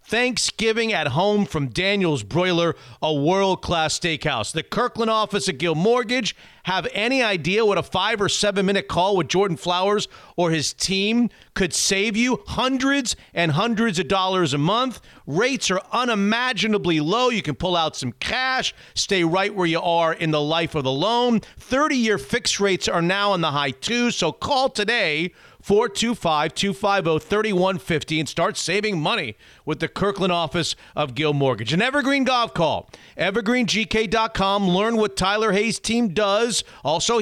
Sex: male